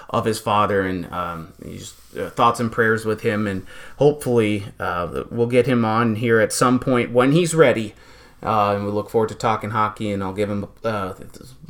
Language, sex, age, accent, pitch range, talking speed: English, male, 30-49, American, 110-130 Hz, 195 wpm